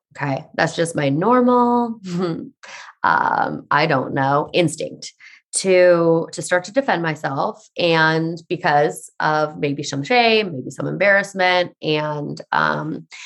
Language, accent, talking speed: English, American, 120 wpm